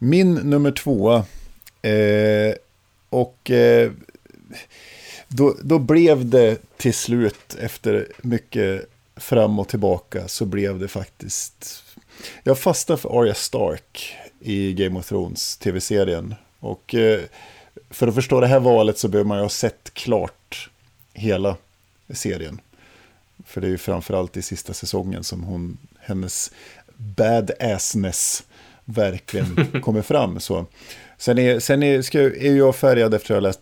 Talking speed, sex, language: 140 wpm, male, Swedish